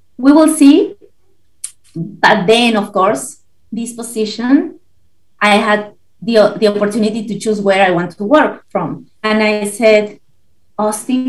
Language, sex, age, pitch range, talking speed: English, female, 30-49, 195-220 Hz, 140 wpm